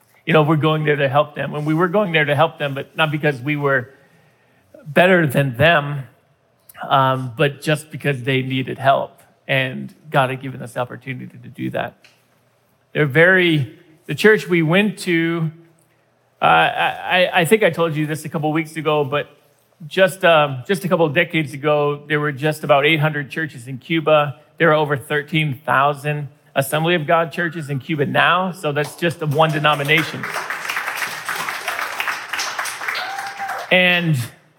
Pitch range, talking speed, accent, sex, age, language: 145-175 Hz, 165 wpm, American, male, 40-59, English